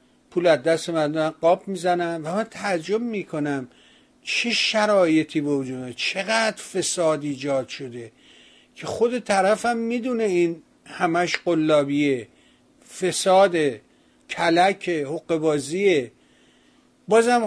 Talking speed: 90 wpm